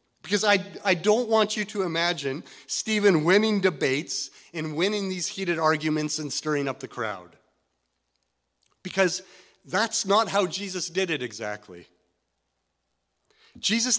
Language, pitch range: English, 150-200 Hz